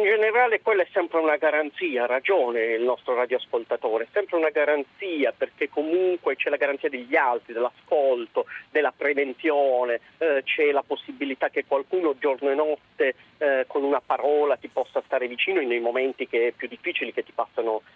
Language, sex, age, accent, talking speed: Italian, male, 40-59, native, 175 wpm